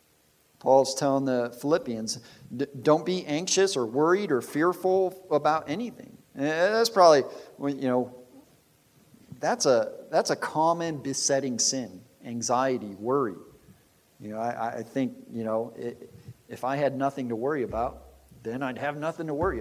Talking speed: 155 wpm